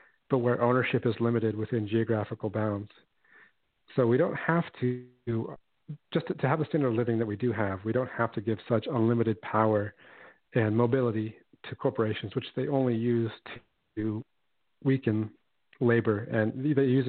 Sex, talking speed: male, 165 wpm